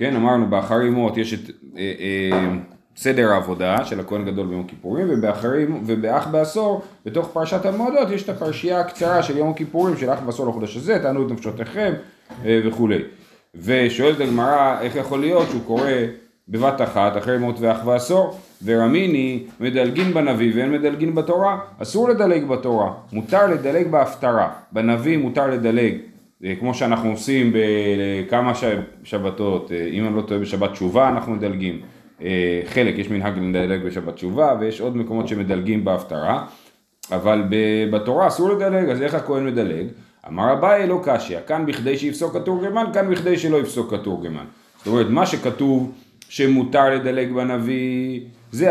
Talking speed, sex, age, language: 145 wpm, male, 30-49, Hebrew